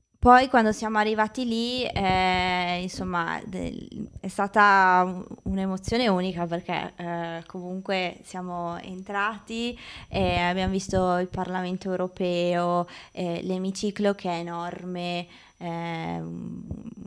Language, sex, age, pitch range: Italian, female, 20-39, 175-205 Hz